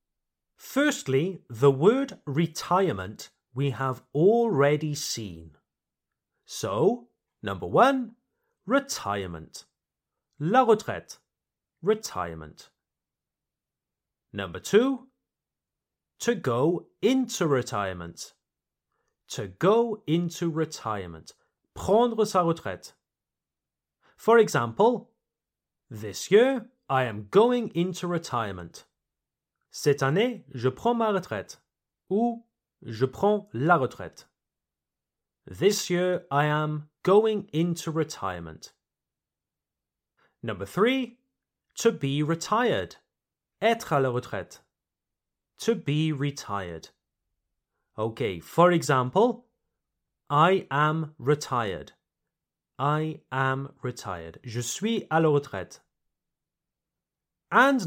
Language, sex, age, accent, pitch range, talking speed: French, male, 30-49, British, 130-215 Hz, 85 wpm